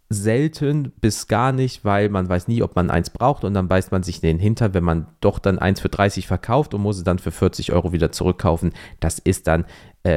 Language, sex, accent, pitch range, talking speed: German, male, German, 85-110 Hz, 240 wpm